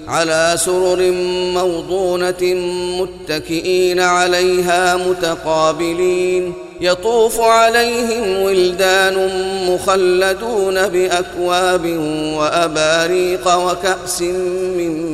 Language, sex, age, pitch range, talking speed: Arabic, male, 30-49, 165-185 Hz, 55 wpm